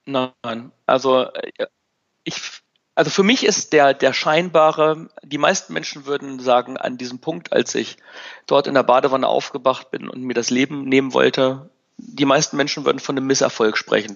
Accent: German